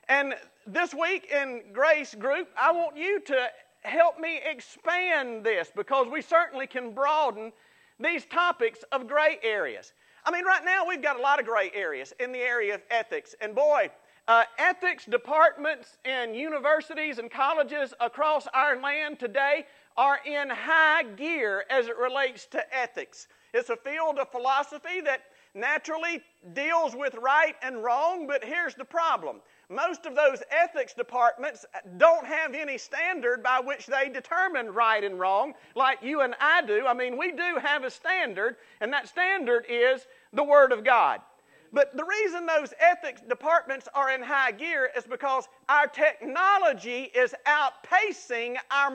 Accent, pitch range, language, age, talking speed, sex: American, 260-335 Hz, English, 50-69, 160 wpm, male